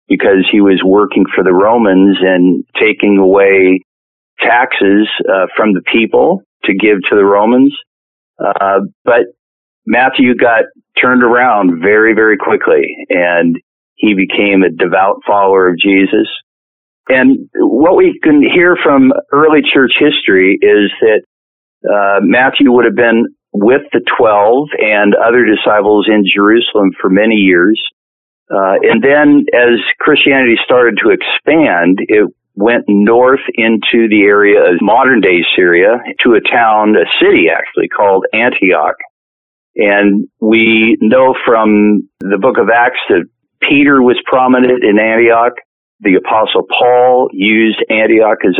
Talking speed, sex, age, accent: 135 wpm, male, 50-69, American